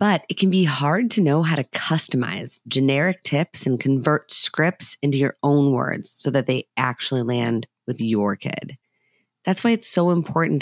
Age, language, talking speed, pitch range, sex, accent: 30-49, English, 180 wpm, 135-160 Hz, female, American